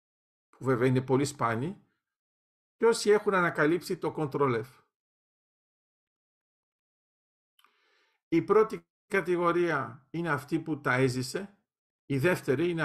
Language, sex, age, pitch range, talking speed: Greek, male, 50-69, 130-195 Hz, 100 wpm